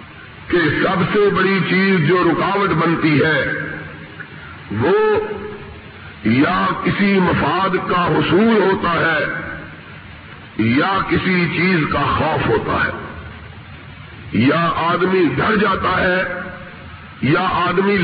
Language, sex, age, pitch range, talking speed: Urdu, male, 50-69, 180-210 Hz, 105 wpm